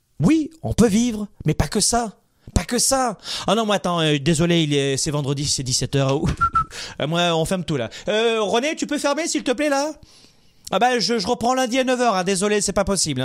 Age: 30-49